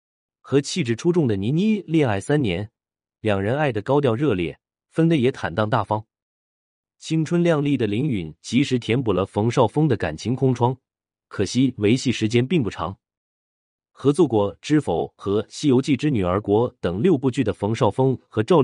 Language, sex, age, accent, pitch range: Chinese, male, 30-49, native, 105-140 Hz